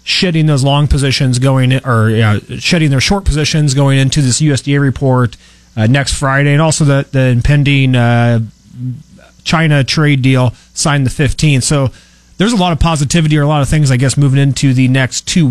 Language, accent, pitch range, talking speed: English, American, 120-145 Hz, 185 wpm